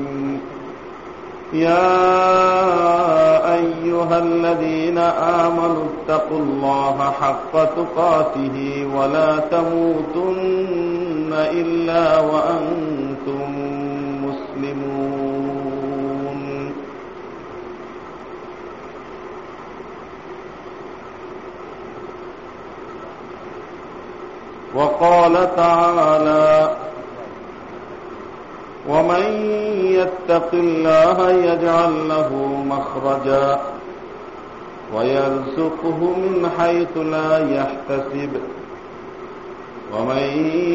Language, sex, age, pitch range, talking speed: Bengali, male, 50-69, 140-185 Hz, 40 wpm